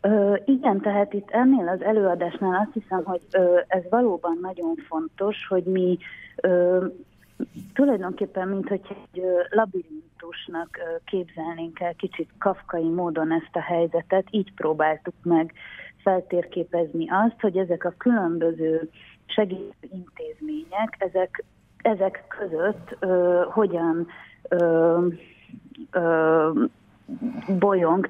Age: 30-49